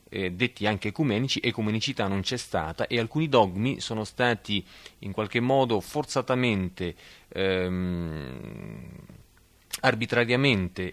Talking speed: 105 wpm